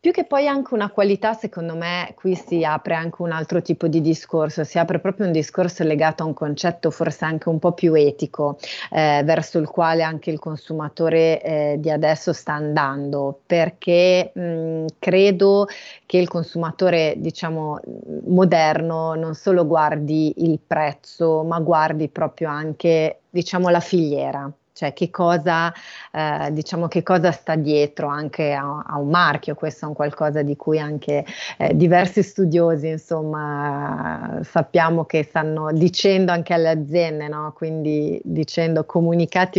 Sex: female